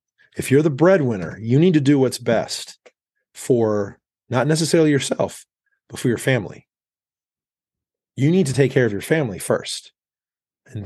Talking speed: 155 wpm